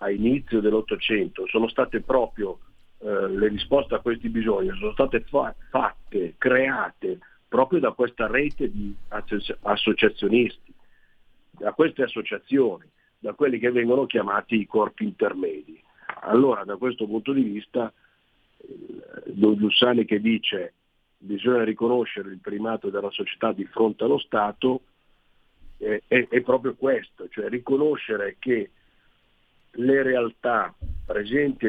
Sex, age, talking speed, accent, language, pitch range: male, 50-69, 125 wpm, native, Italian, 105-135 Hz